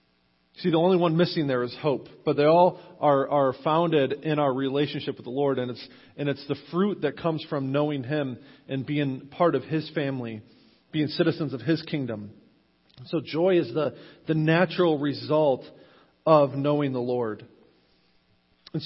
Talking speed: 170 wpm